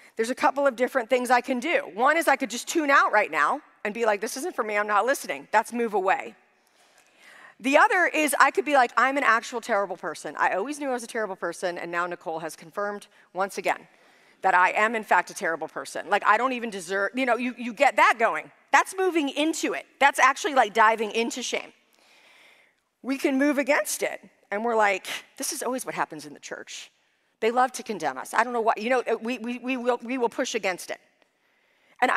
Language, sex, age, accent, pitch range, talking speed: English, female, 40-59, American, 220-285 Hz, 235 wpm